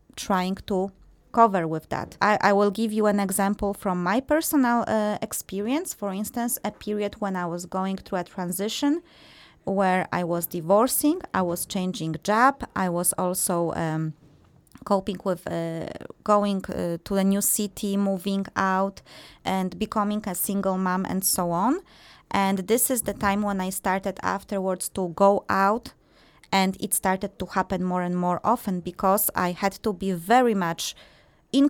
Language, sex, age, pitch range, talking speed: English, female, 20-39, 190-240 Hz, 165 wpm